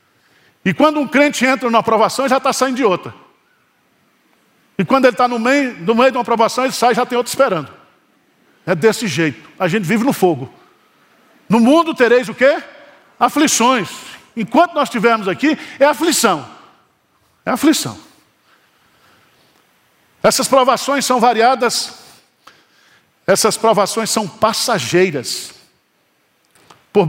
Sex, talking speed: male, 135 wpm